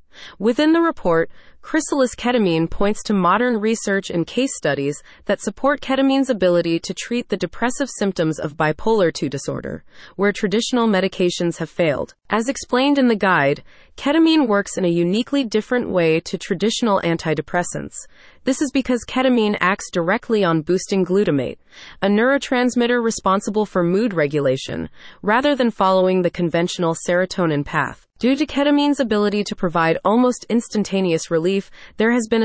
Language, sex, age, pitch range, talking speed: English, female, 30-49, 170-240 Hz, 145 wpm